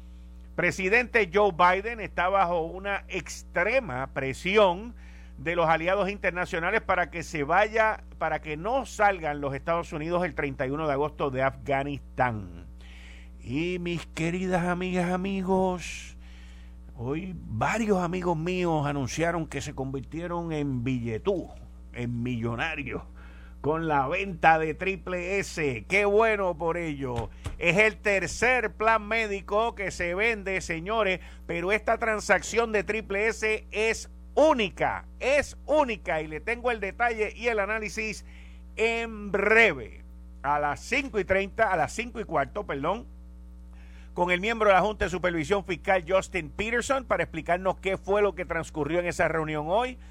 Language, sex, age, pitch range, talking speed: Spanish, male, 50-69, 135-200 Hz, 140 wpm